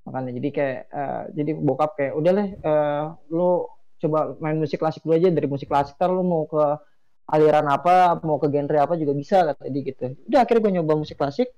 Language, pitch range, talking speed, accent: Indonesian, 140-170 Hz, 210 wpm, native